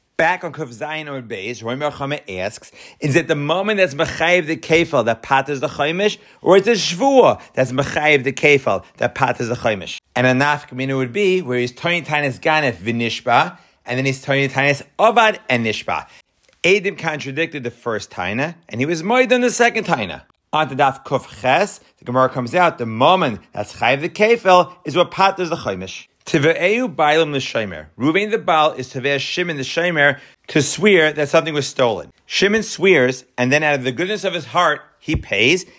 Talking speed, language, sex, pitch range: 190 wpm, English, male, 135-190 Hz